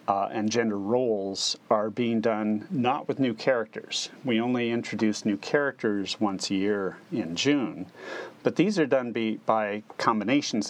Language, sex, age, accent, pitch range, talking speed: English, male, 40-59, American, 105-120 Hz, 150 wpm